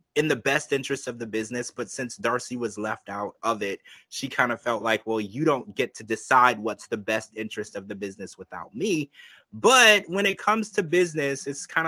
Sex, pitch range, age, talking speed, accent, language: male, 110-145 Hz, 20-39, 215 wpm, American, English